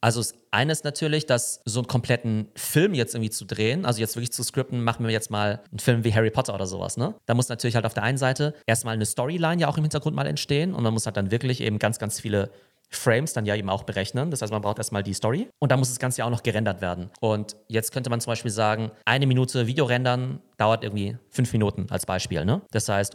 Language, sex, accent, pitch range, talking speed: German, male, German, 105-125 Hz, 260 wpm